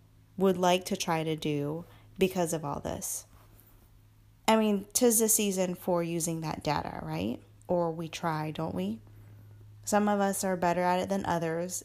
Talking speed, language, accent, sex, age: 170 wpm, English, American, female, 10-29